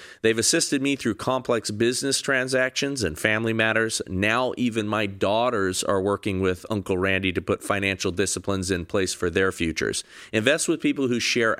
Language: English